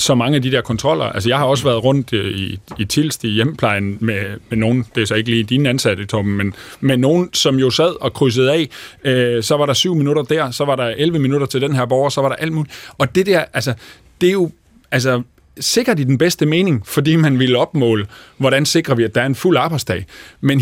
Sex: male